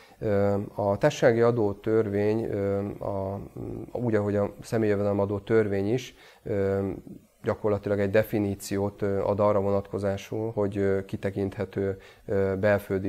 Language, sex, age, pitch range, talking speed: Hungarian, male, 30-49, 100-110 Hz, 95 wpm